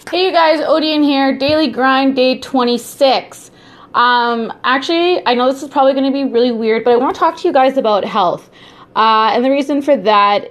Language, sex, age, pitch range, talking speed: English, female, 20-39, 185-255 Hz, 210 wpm